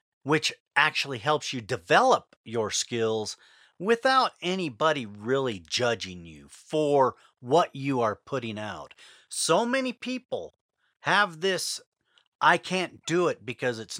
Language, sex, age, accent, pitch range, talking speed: English, male, 40-59, American, 125-170 Hz, 125 wpm